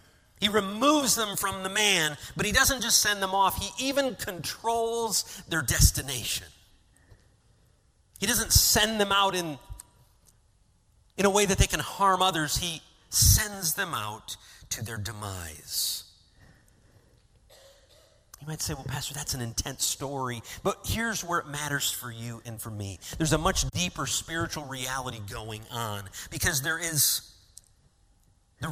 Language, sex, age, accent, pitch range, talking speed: English, male, 40-59, American, 105-170 Hz, 145 wpm